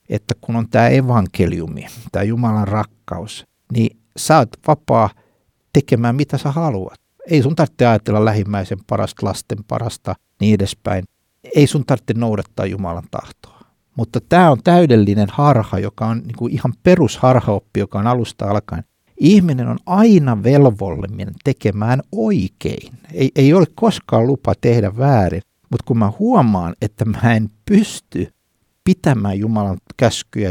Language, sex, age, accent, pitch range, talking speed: Finnish, male, 60-79, native, 100-130 Hz, 140 wpm